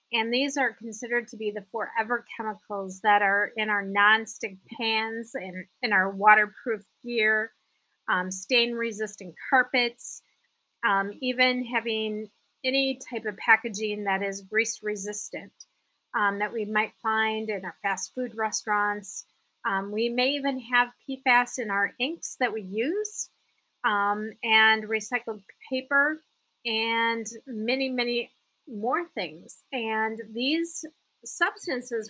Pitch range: 210-250 Hz